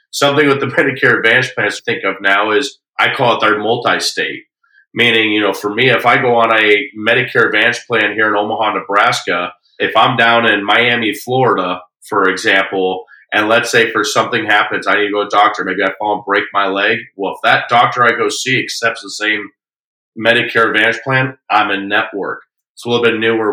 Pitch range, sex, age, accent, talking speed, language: 105-130 Hz, male, 40-59, American, 210 wpm, English